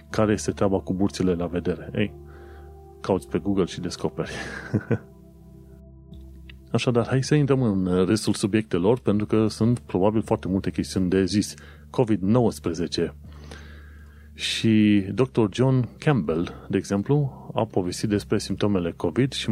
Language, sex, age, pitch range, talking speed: Romanian, male, 30-49, 75-105 Hz, 130 wpm